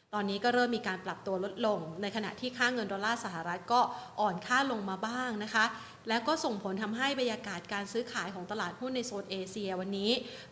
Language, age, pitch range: Thai, 30-49, 195-240 Hz